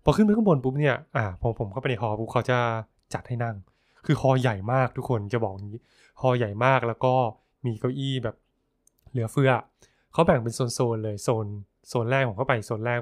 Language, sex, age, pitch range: Thai, male, 20-39, 110-135 Hz